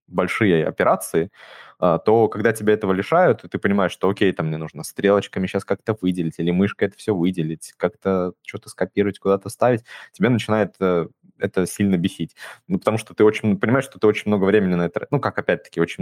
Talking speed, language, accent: 185 wpm, Russian, native